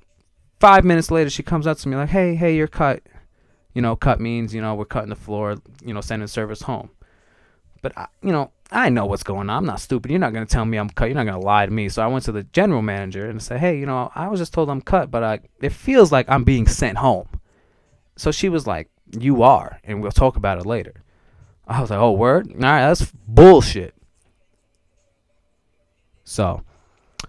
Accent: American